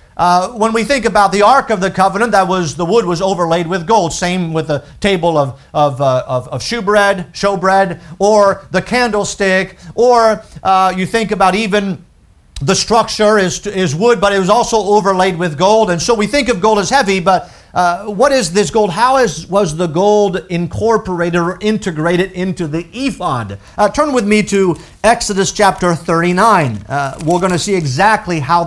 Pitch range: 150-205 Hz